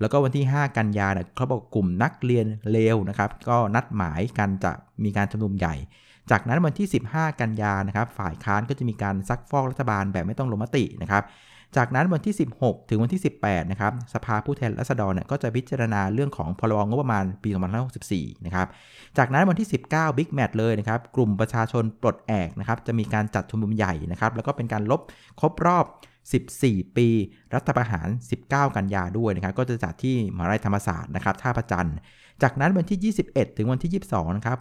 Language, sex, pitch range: Thai, male, 100-130 Hz